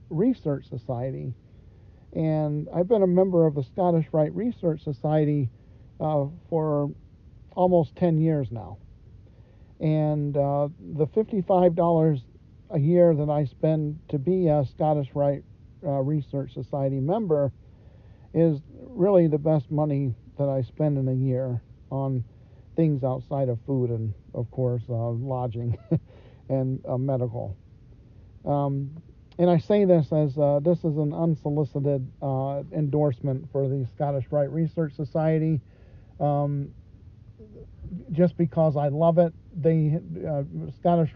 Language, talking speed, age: English, 130 wpm, 50-69